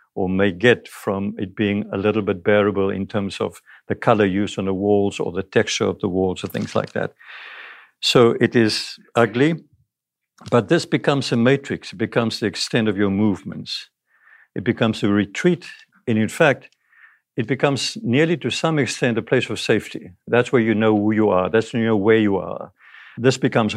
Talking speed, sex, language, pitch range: 195 wpm, male, English, 105-120 Hz